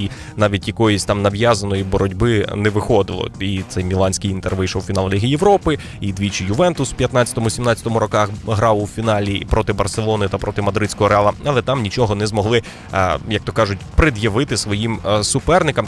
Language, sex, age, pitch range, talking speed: Ukrainian, male, 20-39, 105-125 Hz, 165 wpm